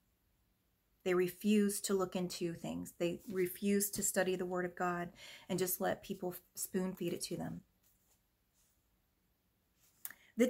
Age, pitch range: 30-49, 180-230 Hz